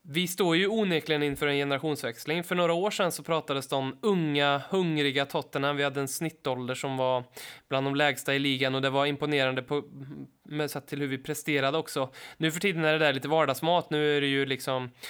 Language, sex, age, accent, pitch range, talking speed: Swedish, male, 20-39, native, 140-160 Hz, 205 wpm